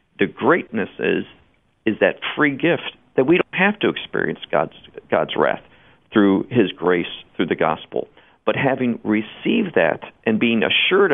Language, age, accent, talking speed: English, 50-69, American, 155 wpm